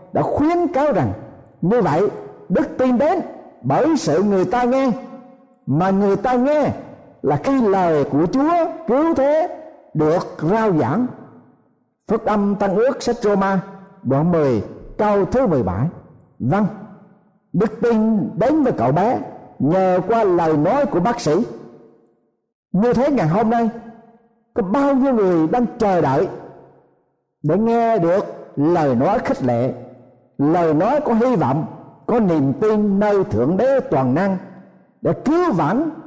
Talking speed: 145 wpm